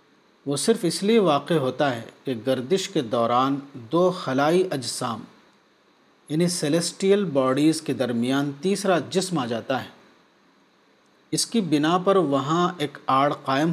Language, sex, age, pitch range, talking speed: Urdu, male, 40-59, 135-180 Hz, 140 wpm